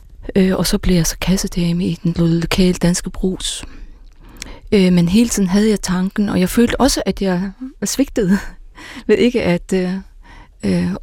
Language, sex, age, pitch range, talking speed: Danish, female, 30-49, 185-215 Hz, 165 wpm